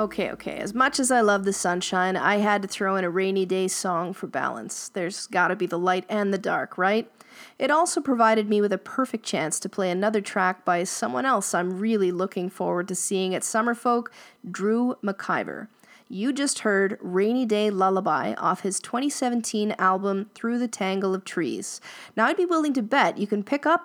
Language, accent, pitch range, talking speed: English, American, 190-240 Hz, 200 wpm